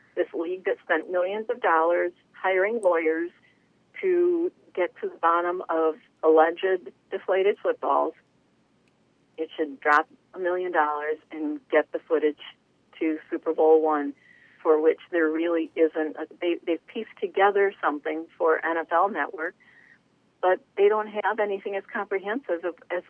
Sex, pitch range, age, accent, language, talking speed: female, 160-225 Hz, 50-69, American, English, 140 wpm